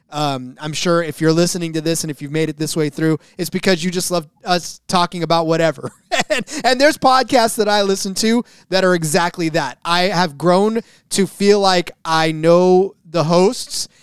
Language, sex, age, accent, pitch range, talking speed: English, male, 20-39, American, 160-190 Hz, 200 wpm